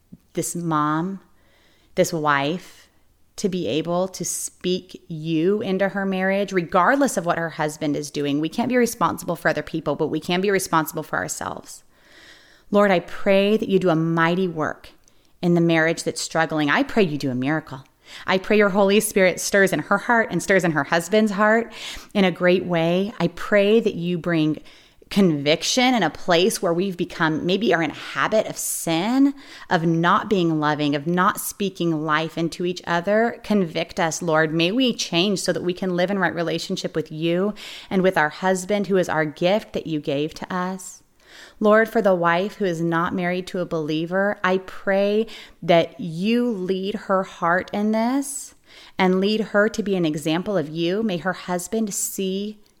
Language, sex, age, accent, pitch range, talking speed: English, female, 30-49, American, 165-200 Hz, 190 wpm